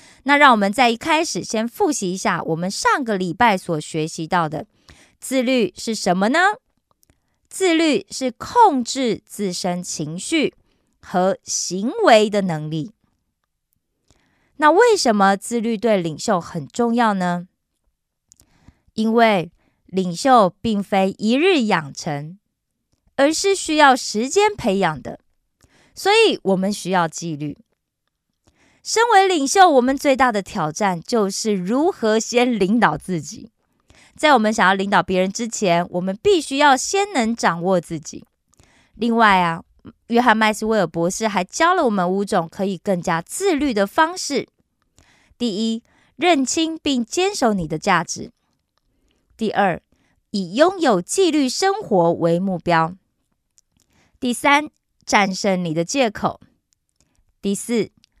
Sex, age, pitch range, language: female, 20-39, 180-270 Hz, Korean